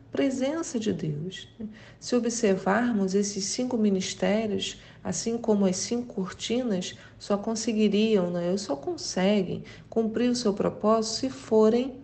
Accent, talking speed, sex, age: Brazilian, 115 wpm, female, 40-59